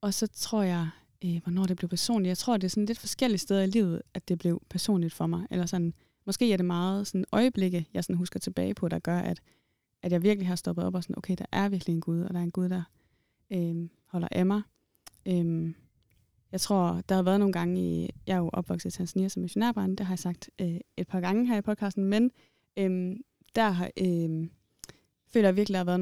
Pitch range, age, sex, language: 175-200 Hz, 20-39, female, Danish